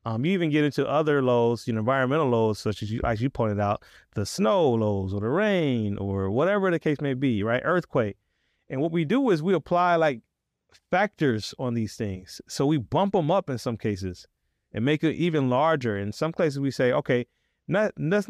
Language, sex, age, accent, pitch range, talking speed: English, male, 30-49, American, 110-150 Hz, 215 wpm